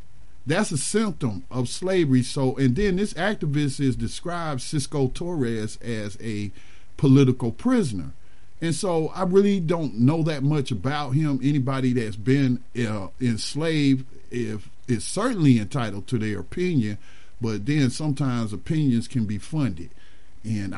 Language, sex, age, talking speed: English, male, 50-69, 140 wpm